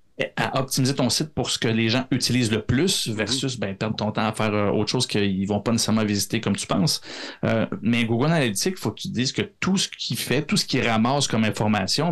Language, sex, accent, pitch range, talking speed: French, male, Canadian, 110-145 Hz, 255 wpm